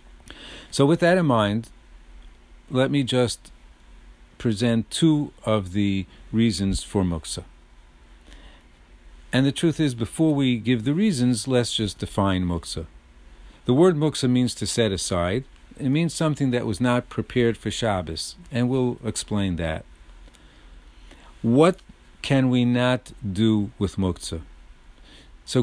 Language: English